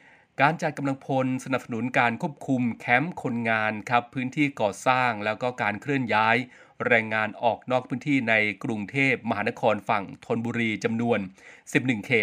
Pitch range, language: 110-130 Hz, Thai